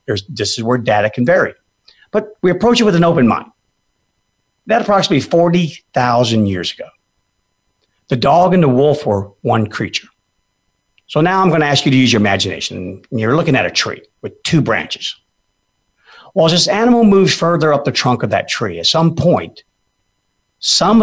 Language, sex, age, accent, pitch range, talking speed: English, male, 50-69, American, 100-150 Hz, 185 wpm